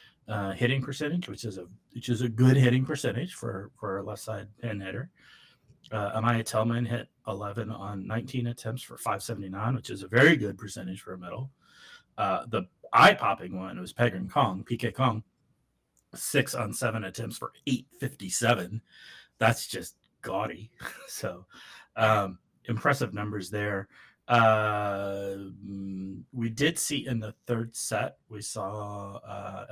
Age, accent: 30-49, American